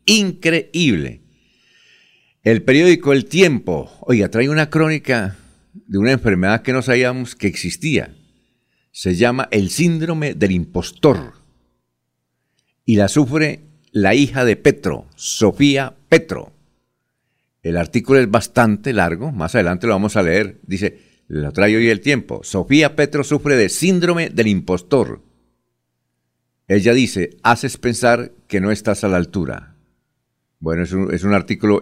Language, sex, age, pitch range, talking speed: Spanish, male, 60-79, 95-135 Hz, 135 wpm